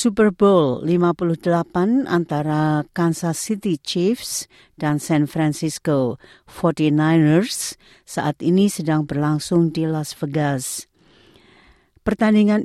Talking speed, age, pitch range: 90 wpm, 50-69, 150-185 Hz